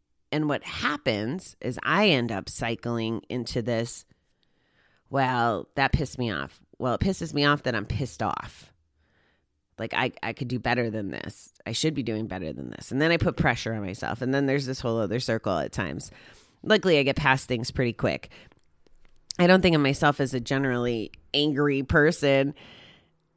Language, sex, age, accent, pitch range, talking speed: English, female, 30-49, American, 120-145 Hz, 185 wpm